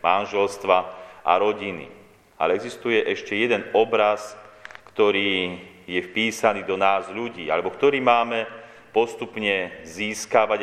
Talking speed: 105 wpm